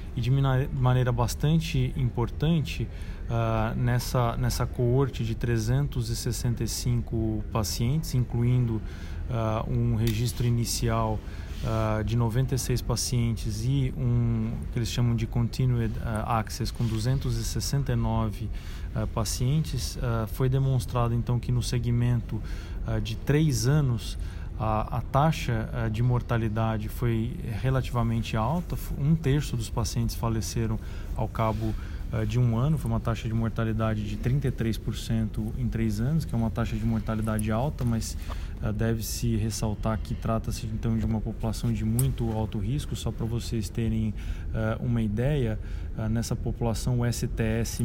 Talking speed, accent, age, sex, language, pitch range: 135 wpm, Brazilian, 20-39, male, Portuguese, 110-120 Hz